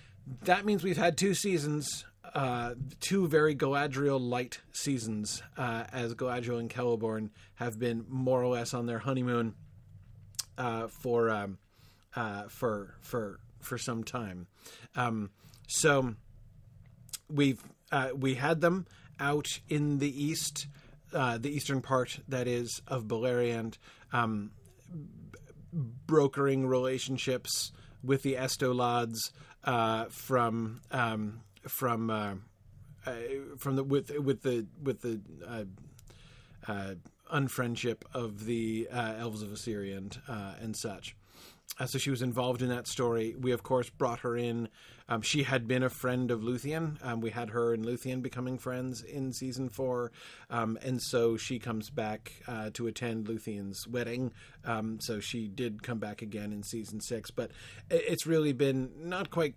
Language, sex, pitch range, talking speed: English, male, 110-135 Hz, 145 wpm